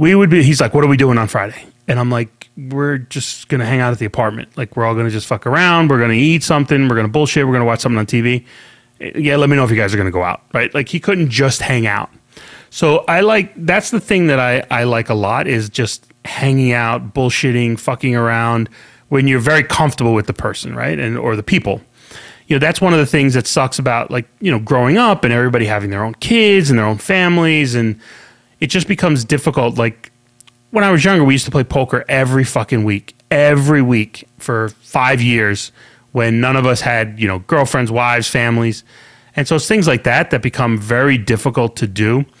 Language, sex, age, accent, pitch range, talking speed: English, male, 30-49, American, 115-150 Hz, 235 wpm